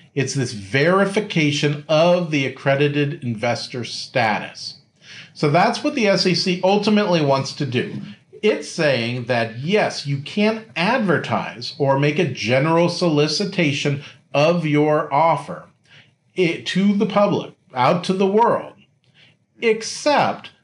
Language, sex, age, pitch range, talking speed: English, male, 40-59, 130-175 Hz, 115 wpm